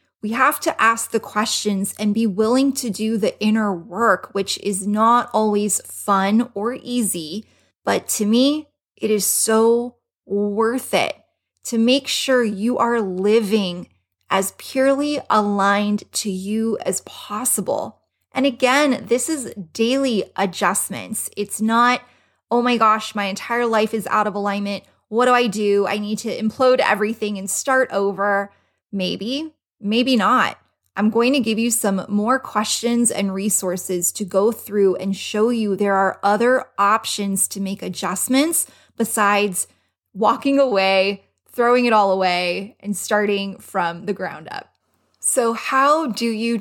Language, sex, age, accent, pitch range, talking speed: English, female, 20-39, American, 195-235 Hz, 150 wpm